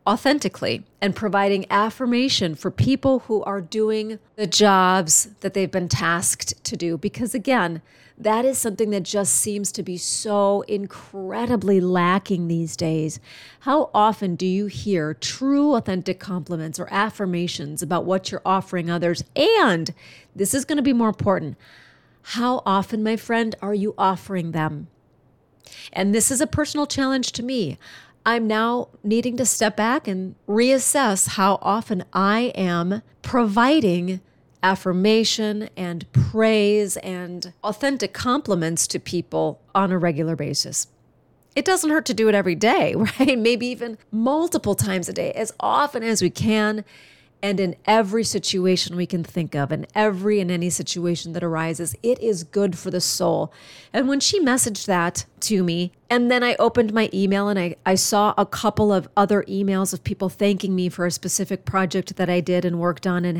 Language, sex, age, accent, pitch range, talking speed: English, female, 40-59, American, 180-225 Hz, 165 wpm